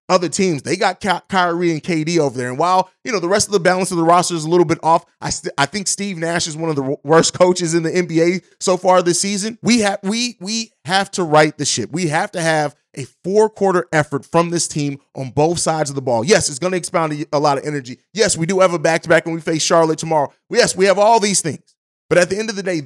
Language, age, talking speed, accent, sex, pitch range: English, 30-49, 280 wpm, American, male, 155-195 Hz